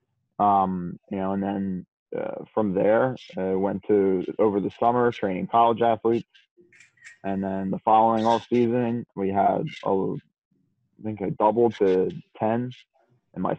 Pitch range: 95-115 Hz